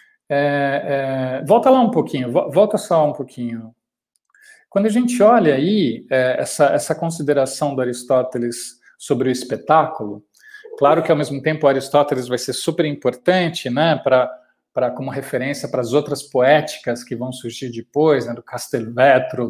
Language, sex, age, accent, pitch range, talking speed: Portuguese, male, 40-59, Brazilian, 130-195 Hz, 155 wpm